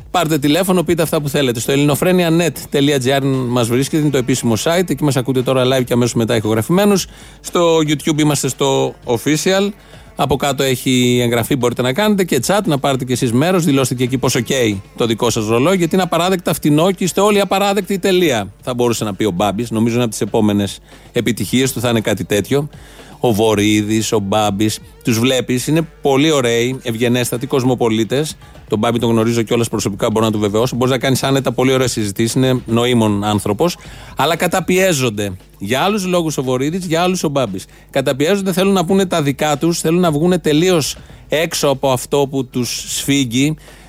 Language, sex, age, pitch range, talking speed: Greek, male, 30-49, 120-170 Hz, 185 wpm